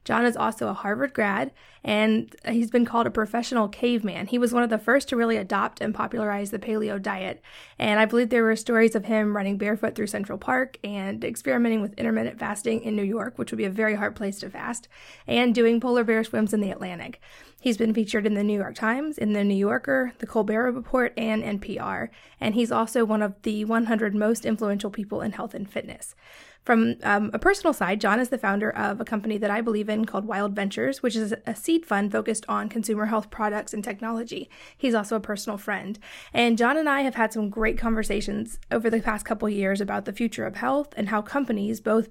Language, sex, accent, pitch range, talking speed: English, female, American, 205-235 Hz, 220 wpm